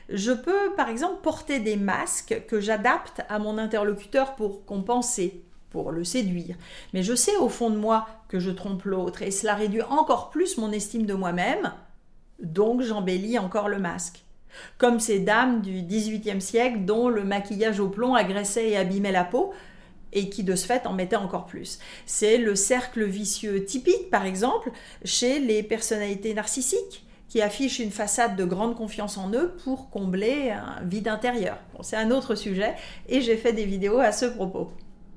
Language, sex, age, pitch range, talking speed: French, female, 40-59, 200-245 Hz, 175 wpm